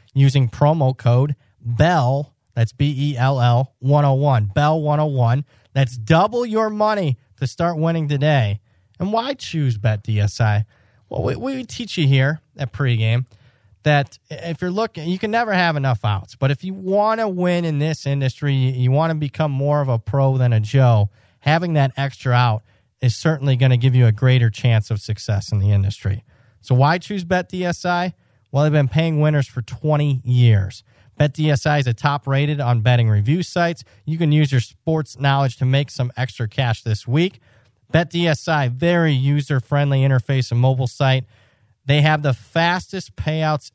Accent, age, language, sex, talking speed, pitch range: American, 30-49, English, male, 170 wpm, 120-155 Hz